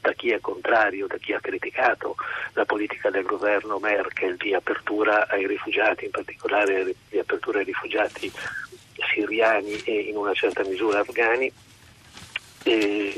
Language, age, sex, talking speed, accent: Italian, 40-59, male, 140 wpm, native